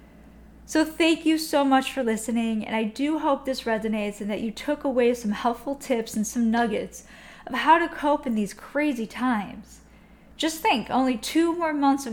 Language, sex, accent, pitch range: English, female, American, 215-270 Hz